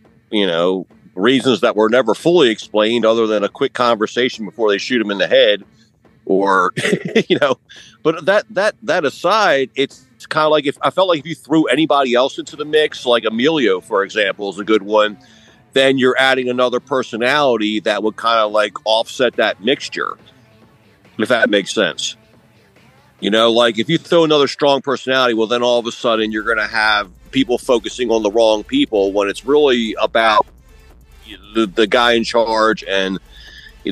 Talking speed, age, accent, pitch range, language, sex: 185 wpm, 50-69, American, 105-130 Hz, English, male